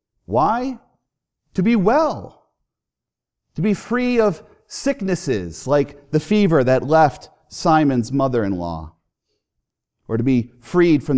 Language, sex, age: English, male, 40-59